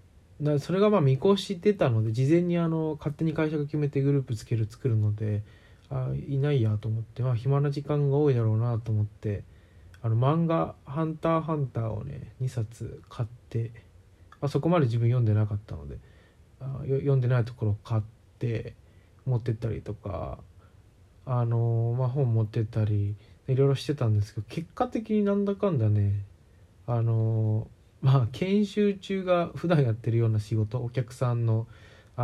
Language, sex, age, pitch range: Japanese, male, 20-39, 105-140 Hz